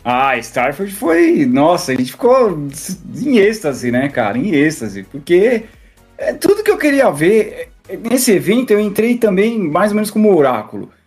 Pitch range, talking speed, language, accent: 145-230 Hz, 155 wpm, Portuguese, Brazilian